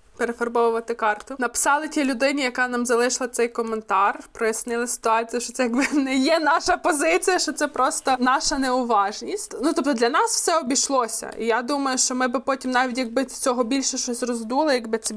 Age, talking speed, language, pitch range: 20-39, 180 wpm, Ukrainian, 240-300 Hz